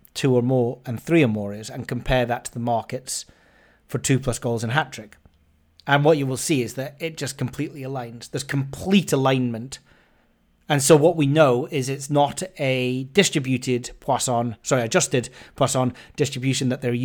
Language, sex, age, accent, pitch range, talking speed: English, male, 30-49, British, 120-140 Hz, 175 wpm